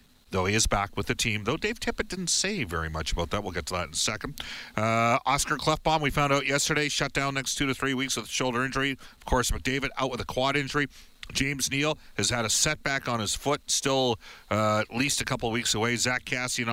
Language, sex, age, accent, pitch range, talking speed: English, male, 50-69, American, 105-135 Hz, 250 wpm